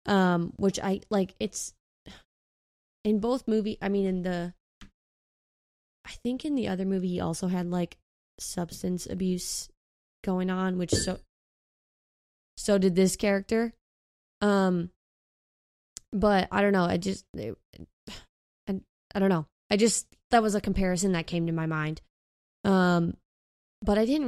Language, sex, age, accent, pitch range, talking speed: English, female, 20-39, American, 175-205 Hz, 145 wpm